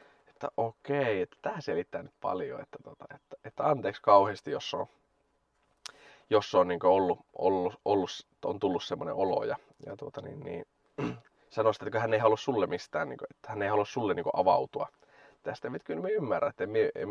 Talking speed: 165 wpm